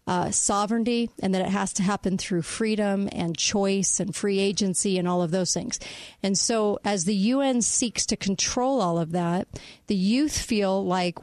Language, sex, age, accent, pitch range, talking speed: English, female, 40-59, American, 190-235 Hz, 185 wpm